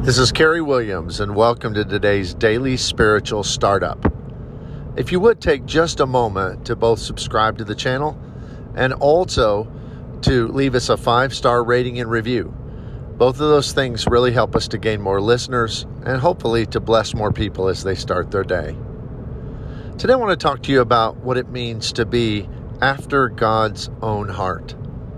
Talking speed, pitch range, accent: 175 wpm, 110-130 Hz, American